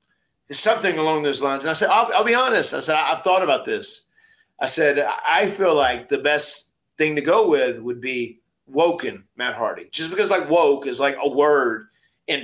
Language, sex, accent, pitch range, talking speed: English, male, American, 130-175 Hz, 205 wpm